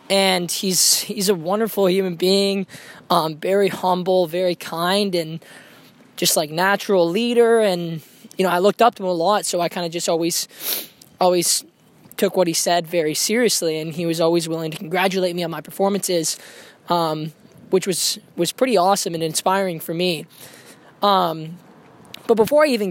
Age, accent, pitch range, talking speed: 20-39, American, 170-200 Hz, 175 wpm